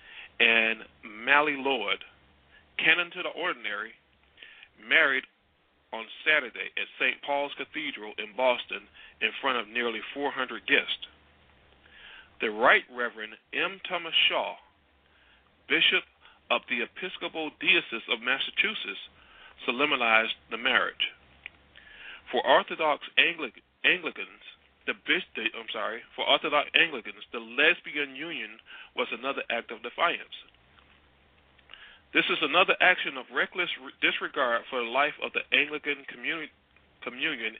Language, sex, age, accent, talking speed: English, male, 40-59, American, 115 wpm